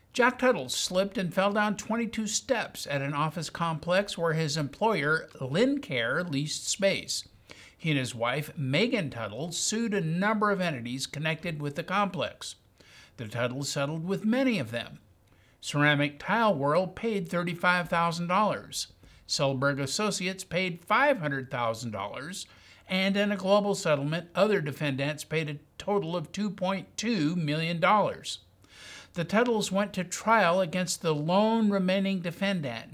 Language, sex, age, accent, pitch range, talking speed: English, male, 50-69, American, 140-195 Hz, 135 wpm